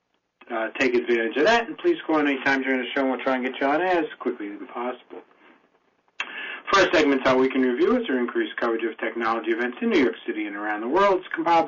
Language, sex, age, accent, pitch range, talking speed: English, male, 40-59, American, 125-160 Hz, 250 wpm